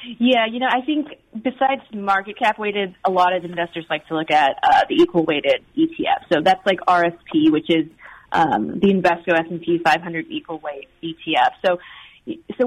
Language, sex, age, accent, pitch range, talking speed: English, female, 30-49, American, 170-215 Hz, 165 wpm